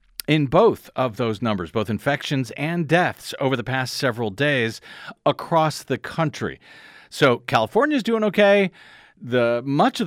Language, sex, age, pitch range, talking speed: English, male, 40-59, 115-160 Hz, 150 wpm